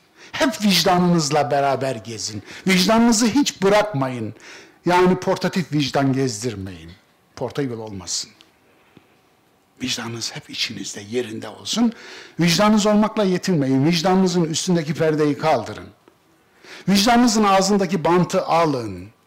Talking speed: 90 wpm